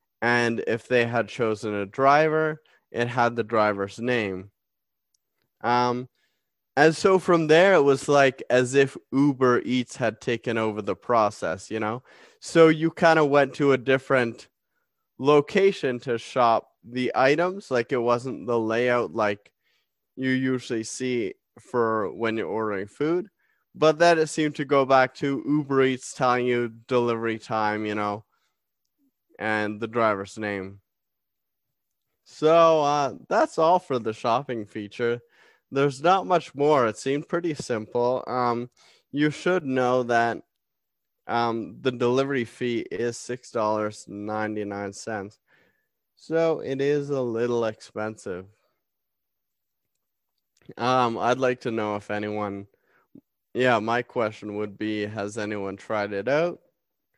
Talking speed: 135 wpm